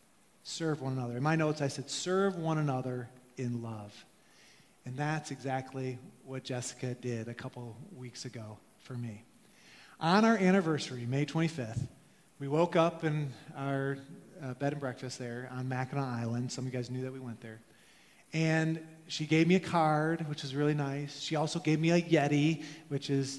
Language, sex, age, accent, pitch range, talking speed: English, male, 30-49, American, 130-165 Hz, 180 wpm